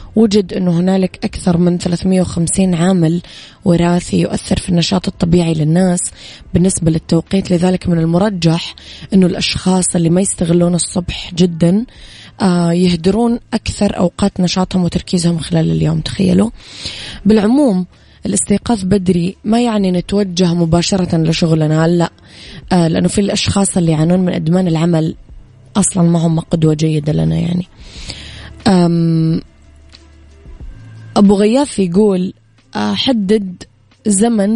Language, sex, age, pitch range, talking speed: Arabic, female, 20-39, 170-200 Hz, 110 wpm